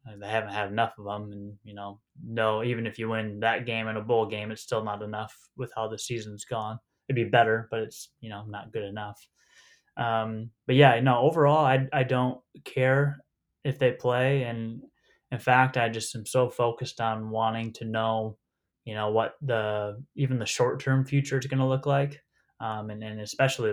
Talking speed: 200 wpm